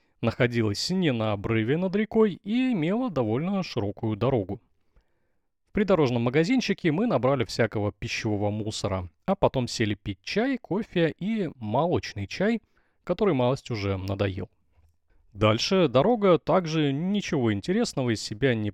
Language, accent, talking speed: Russian, native, 130 wpm